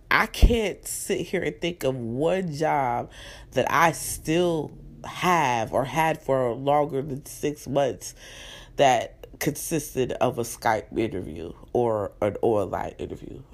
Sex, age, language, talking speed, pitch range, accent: female, 30-49, English, 135 wpm, 135-215 Hz, American